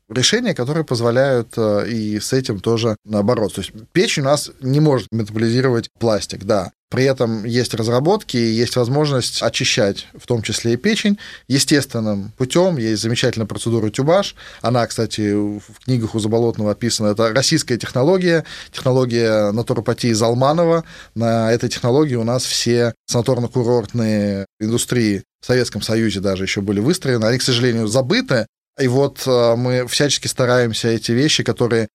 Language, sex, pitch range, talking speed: Russian, male, 110-130 Hz, 145 wpm